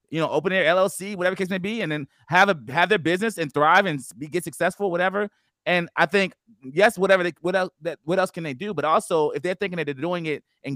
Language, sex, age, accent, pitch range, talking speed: English, male, 30-49, American, 150-190 Hz, 260 wpm